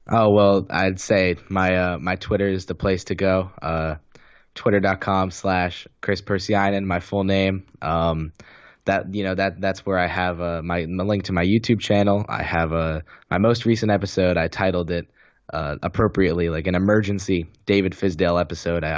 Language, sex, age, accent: English, male, 10-29, American